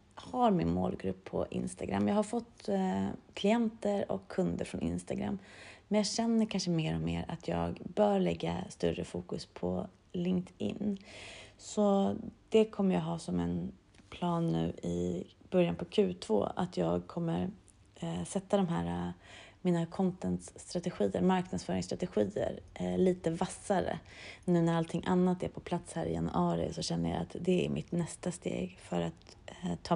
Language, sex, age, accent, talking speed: Swedish, female, 30-49, native, 150 wpm